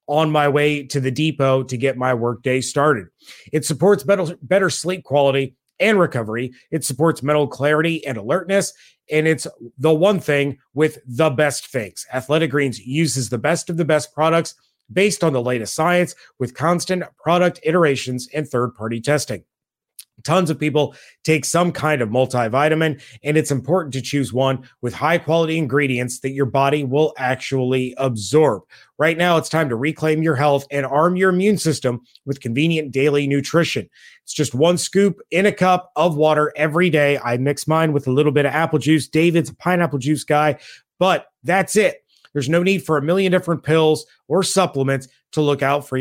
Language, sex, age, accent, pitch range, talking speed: English, male, 30-49, American, 135-165 Hz, 180 wpm